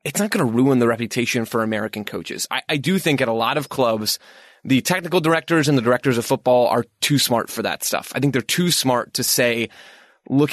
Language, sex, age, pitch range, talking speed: English, male, 20-39, 115-140 Hz, 235 wpm